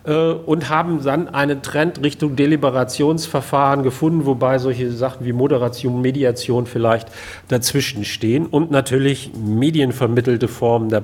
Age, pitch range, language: 40-59, 120-155 Hz, German